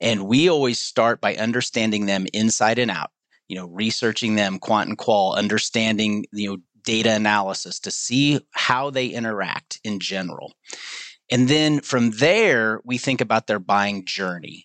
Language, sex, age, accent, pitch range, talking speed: English, male, 30-49, American, 105-135 Hz, 160 wpm